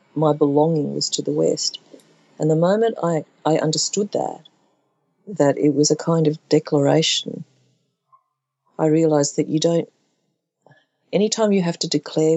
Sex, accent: female, Australian